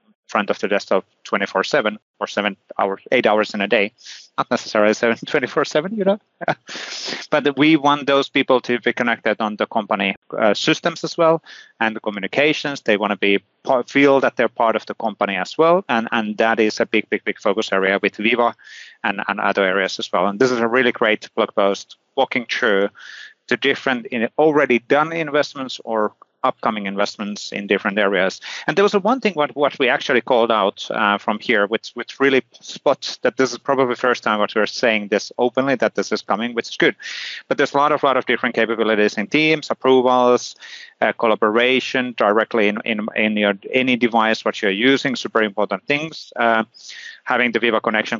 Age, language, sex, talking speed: 30-49, English, male, 195 wpm